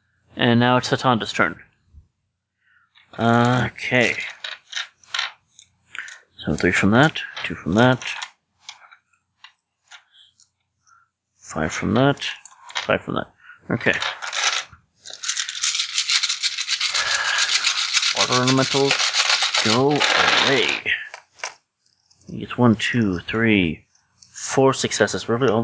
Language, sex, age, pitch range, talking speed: English, male, 30-49, 105-135 Hz, 75 wpm